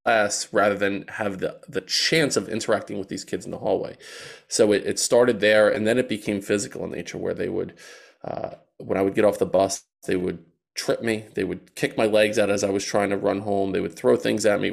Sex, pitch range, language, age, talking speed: male, 100-125 Hz, English, 20-39, 245 wpm